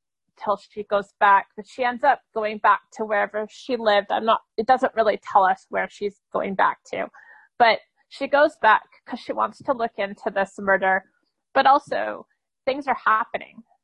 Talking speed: 180 wpm